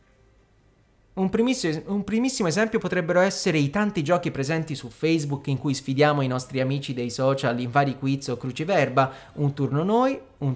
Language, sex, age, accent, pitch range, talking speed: Italian, male, 30-49, native, 135-200 Hz, 160 wpm